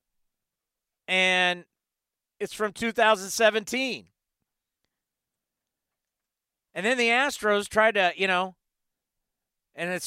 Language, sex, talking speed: English, male, 85 wpm